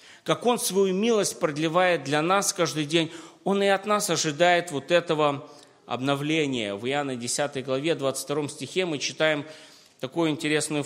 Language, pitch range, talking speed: Russian, 145-180 Hz, 150 wpm